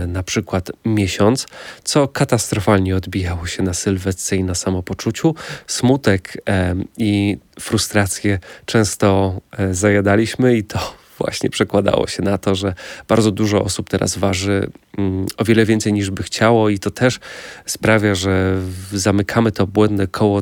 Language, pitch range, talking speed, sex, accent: Polish, 95-110 Hz, 130 wpm, male, native